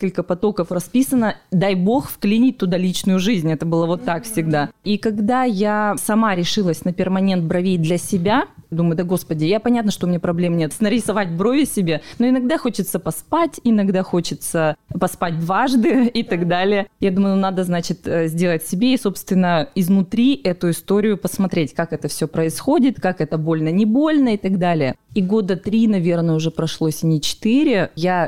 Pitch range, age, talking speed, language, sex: 170-220 Hz, 20-39, 175 wpm, Russian, female